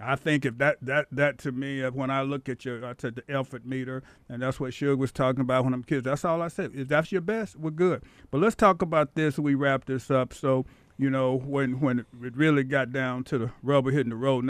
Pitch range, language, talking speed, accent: 125-140 Hz, English, 260 wpm, American